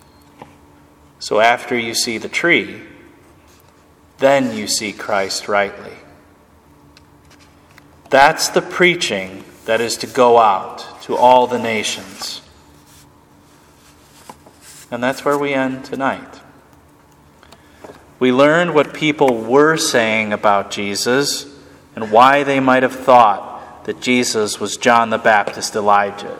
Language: English